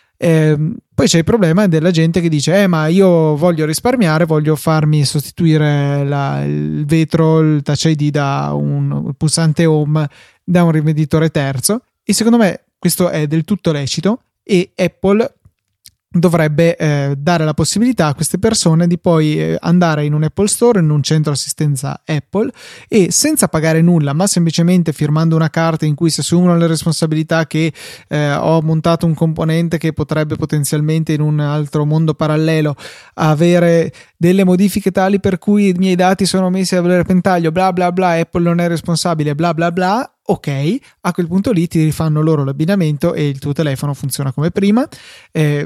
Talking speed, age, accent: 170 wpm, 20-39, native